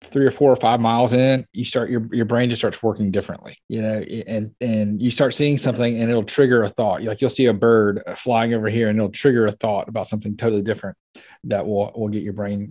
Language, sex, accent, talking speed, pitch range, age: English, male, American, 245 wpm, 105-125 Hz, 30-49